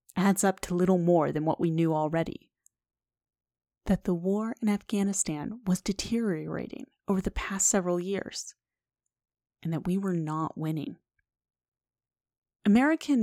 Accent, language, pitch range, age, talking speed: American, English, 165-230 Hz, 30-49, 130 wpm